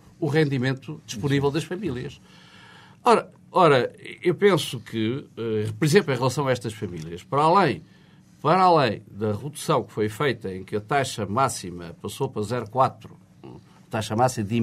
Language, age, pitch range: Portuguese, 50-69, 120-190 Hz